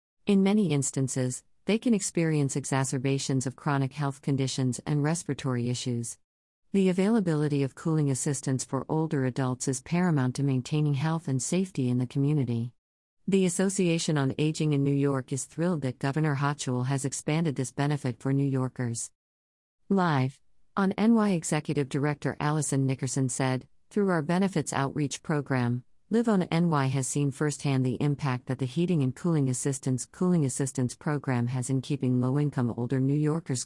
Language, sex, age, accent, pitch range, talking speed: English, female, 50-69, American, 130-150 Hz, 155 wpm